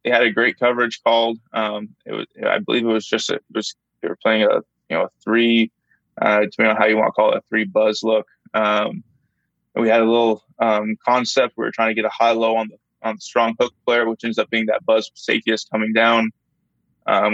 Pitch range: 110-115 Hz